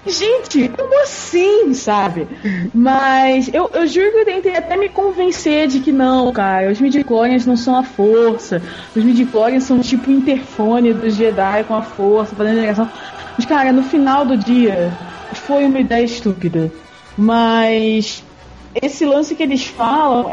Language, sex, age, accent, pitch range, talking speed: Portuguese, female, 20-39, Brazilian, 225-295 Hz, 150 wpm